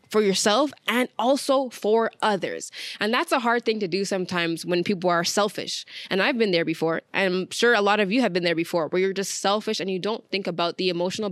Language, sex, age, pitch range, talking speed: English, female, 10-29, 180-215 Hz, 240 wpm